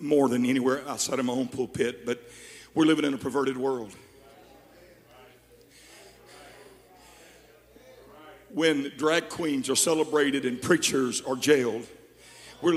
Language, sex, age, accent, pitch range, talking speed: English, male, 60-79, American, 165-250 Hz, 120 wpm